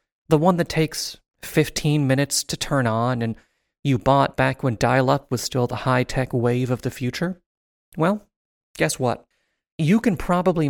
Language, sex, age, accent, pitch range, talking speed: English, male, 30-49, American, 125-155 Hz, 165 wpm